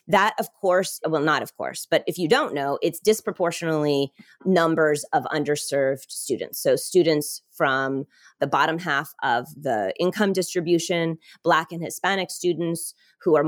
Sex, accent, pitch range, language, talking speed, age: female, American, 150-185 Hz, English, 150 wpm, 30-49